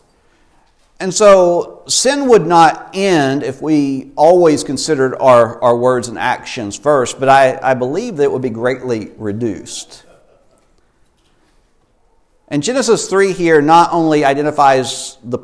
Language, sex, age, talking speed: English, male, 50-69, 130 wpm